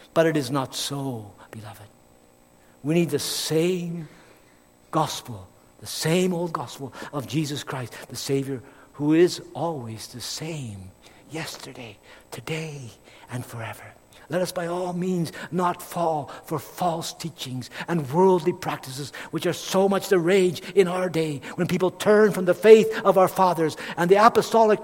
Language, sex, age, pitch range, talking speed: English, male, 60-79, 125-180 Hz, 150 wpm